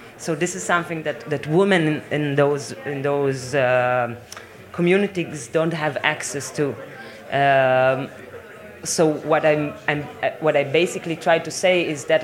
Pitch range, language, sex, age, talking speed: 130-160 Hz, German, female, 20-39, 145 wpm